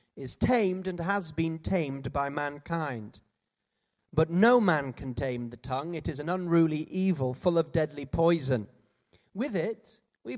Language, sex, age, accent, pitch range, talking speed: English, male, 40-59, British, 125-185 Hz, 155 wpm